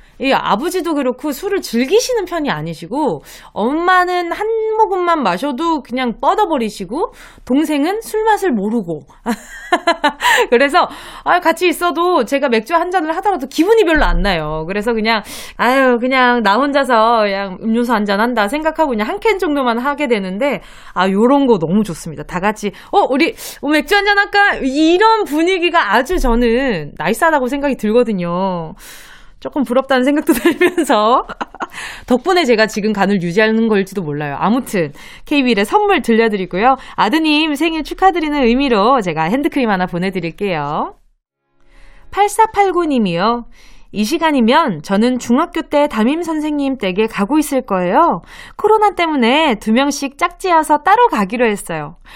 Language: Korean